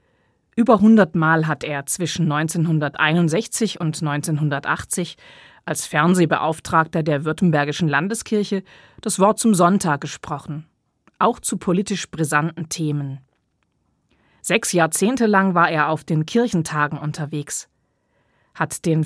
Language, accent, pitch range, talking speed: German, German, 150-190 Hz, 105 wpm